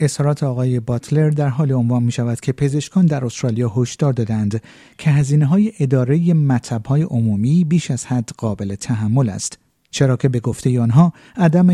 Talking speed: 160 wpm